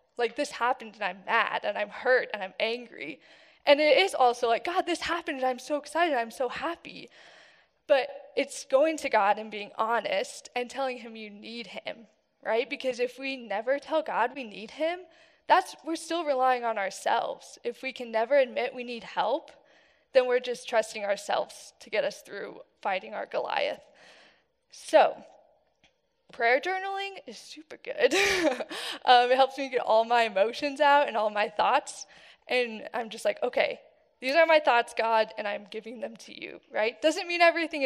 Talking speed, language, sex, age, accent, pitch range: 185 wpm, English, female, 10-29, American, 230-310 Hz